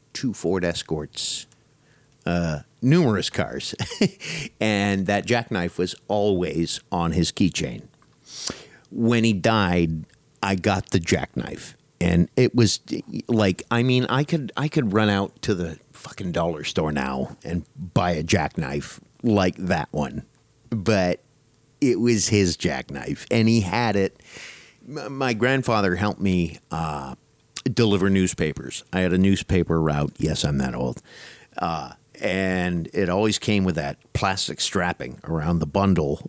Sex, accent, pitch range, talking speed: male, American, 85-110 Hz, 135 wpm